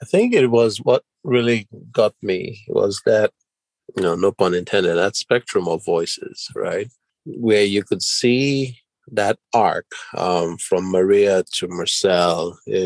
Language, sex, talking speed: English, male, 150 wpm